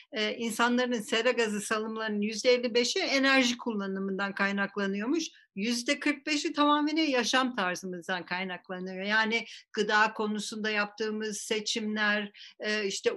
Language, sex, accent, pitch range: Turkish, female, native, 205-250 Hz